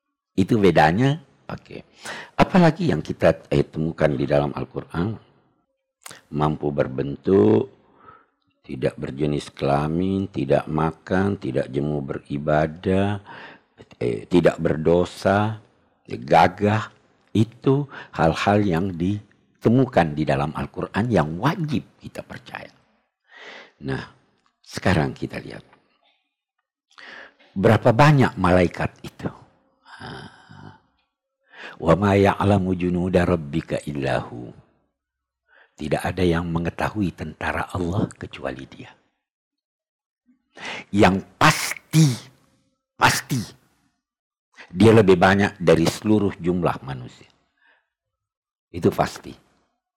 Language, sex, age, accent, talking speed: Indonesian, male, 60-79, native, 85 wpm